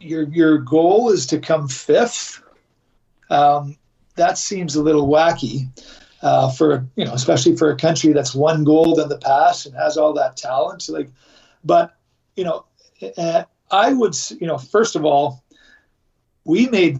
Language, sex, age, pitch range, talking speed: English, male, 40-59, 140-165 Hz, 165 wpm